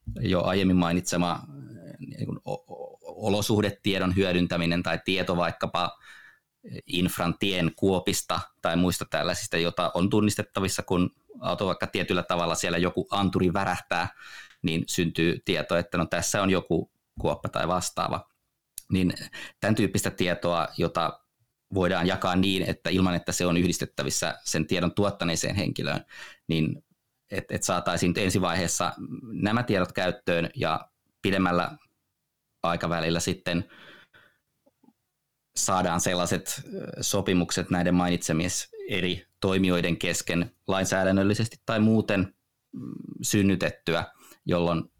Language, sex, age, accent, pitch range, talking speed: Finnish, male, 20-39, native, 85-95 Hz, 110 wpm